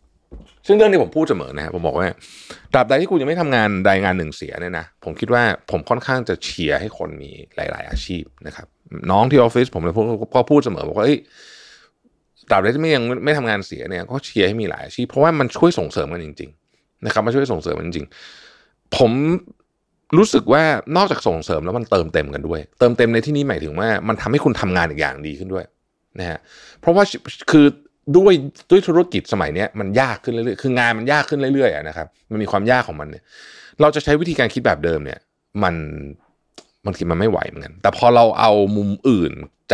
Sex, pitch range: male, 95-145 Hz